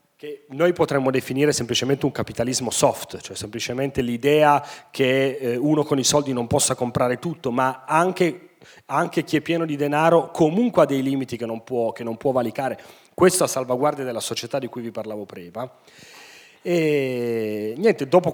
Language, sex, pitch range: Italian, male, 115-150 Hz